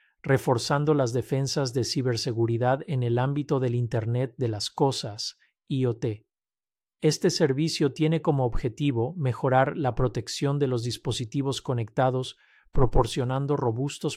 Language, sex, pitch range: Spanish, male, 120-140 Hz